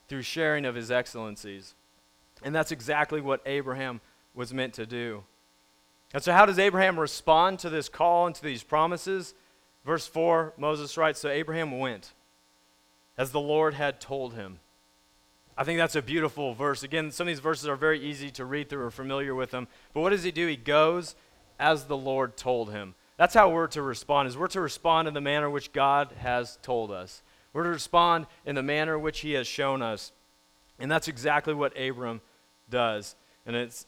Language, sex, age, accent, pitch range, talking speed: English, male, 30-49, American, 110-155 Hz, 195 wpm